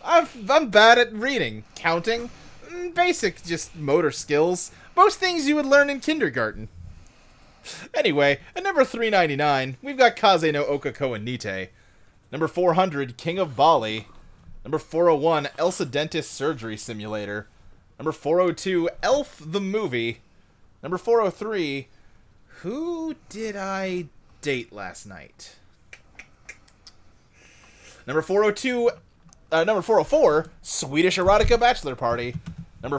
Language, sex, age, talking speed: English, male, 30-49, 115 wpm